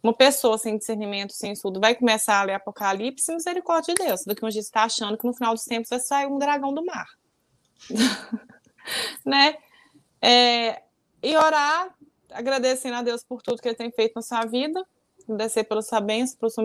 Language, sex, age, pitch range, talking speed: Portuguese, female, 20-39, 210-260 Hz, 190 wpm